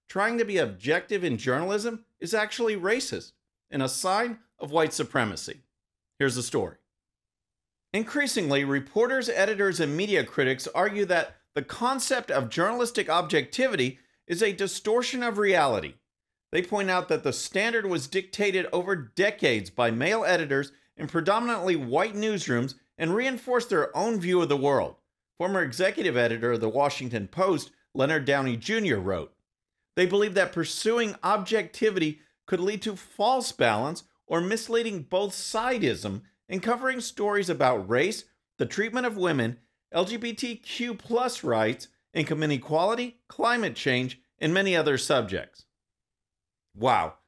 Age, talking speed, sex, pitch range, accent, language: 50-69, 135 wpm, male, 140-220 Hz, American, English